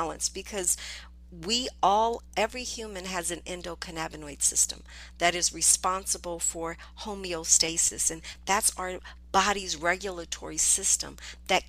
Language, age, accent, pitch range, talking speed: English, 50-69, American, 160-200 Hz, 110 wpm